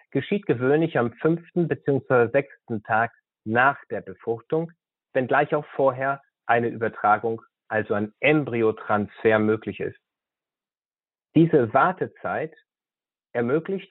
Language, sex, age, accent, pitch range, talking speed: German, male, 30-49, German, 115-150 Hz, 105 wpm